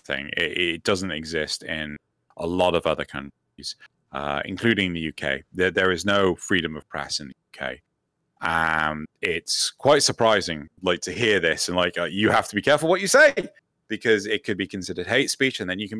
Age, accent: 30-49, British